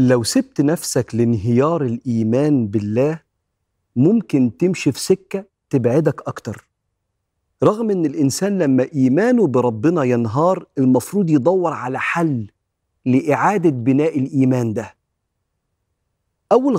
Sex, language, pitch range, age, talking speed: male, Arabic, 125-165 Hz, 40-59, 100 wpm